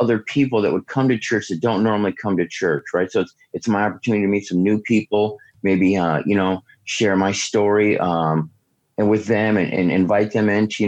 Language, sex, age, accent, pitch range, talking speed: English, male, 30-49, American, 90-105 Hz, 225 wpm